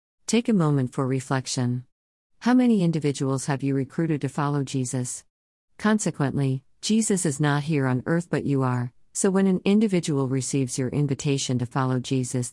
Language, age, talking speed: English, 50-69, 165 wpm